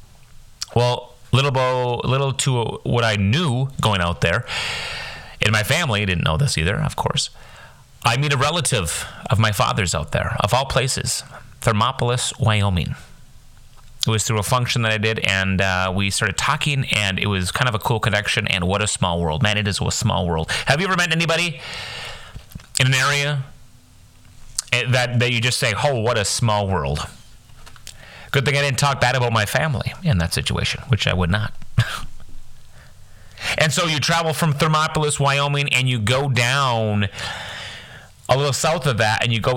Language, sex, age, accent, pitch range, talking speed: English, male, 30-49, American, 105-135 Hz, 180 wpm